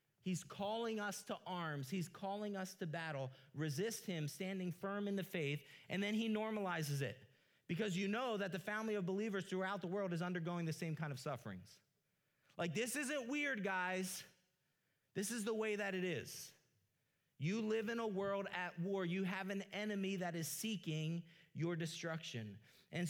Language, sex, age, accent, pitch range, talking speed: English, male, 30-49, American, 165-205 Hz, 180 wpm